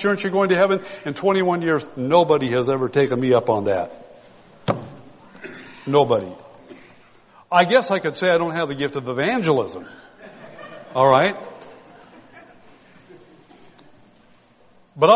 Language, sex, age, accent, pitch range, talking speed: English, male, 60-79, American, 145-195 Hz, 120 wpm